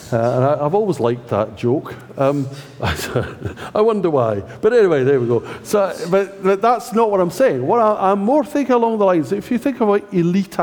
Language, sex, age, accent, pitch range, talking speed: English, male, 50-69, British, 120-190 Hz, 220 wpm